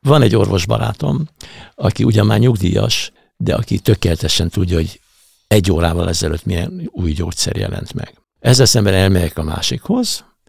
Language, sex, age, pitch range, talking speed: Hungarian, male, 60-79, 80-105 Hz, 150 wpm